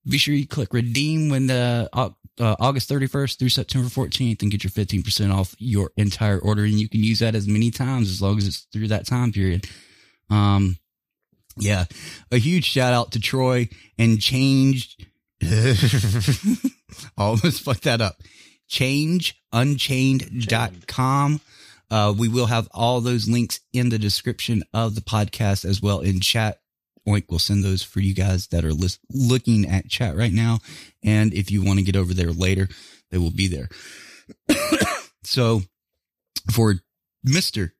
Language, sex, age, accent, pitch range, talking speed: English, male, 20-39, American, 100-130 Hz, 160 wpm